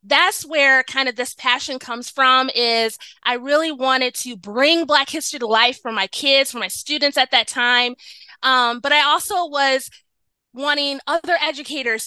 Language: English